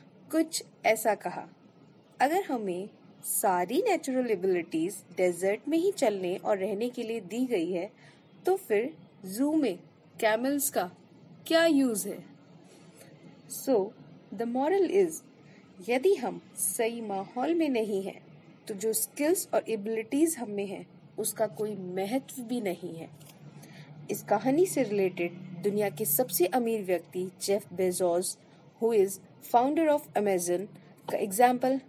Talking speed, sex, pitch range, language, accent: 130 wpm, female, 185-260 Hz, Hindi, native